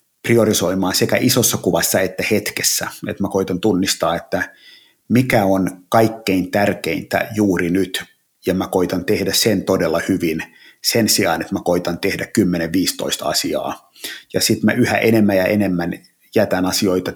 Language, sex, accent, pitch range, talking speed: Finnish, male, native, 90-105 Hz, 145 wpm